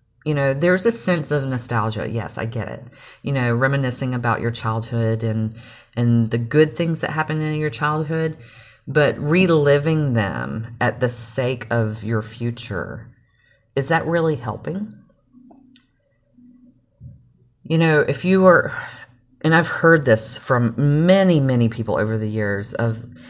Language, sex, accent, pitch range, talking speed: English, female, American, 115-140 Hz, 145 wpm